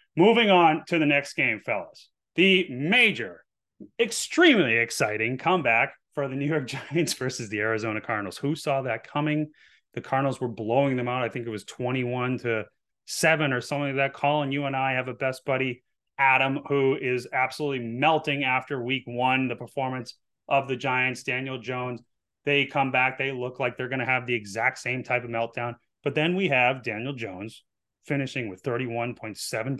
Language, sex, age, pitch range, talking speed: English, male, 30-49, 120-145 Hz, 180 wpm